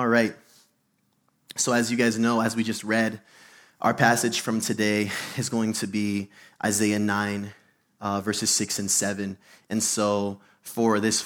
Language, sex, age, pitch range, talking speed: English, male, 20-39, 105-120 Hz, 160 wpm